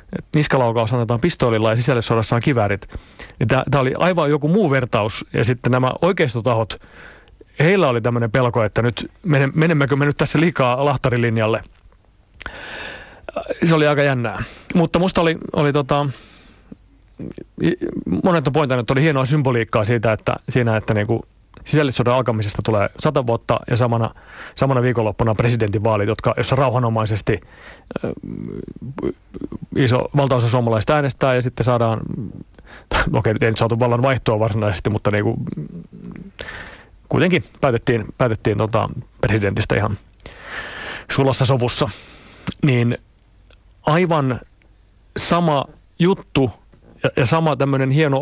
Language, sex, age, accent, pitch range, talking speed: Finnish, male, 30-49, native, 110-145 Hz, 115 wpm